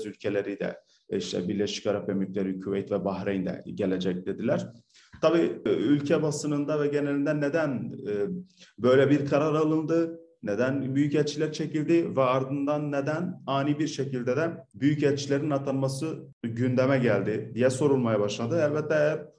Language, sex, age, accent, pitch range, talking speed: Turkish, male, 40-59, native, 115-145 Hz, 125 wpm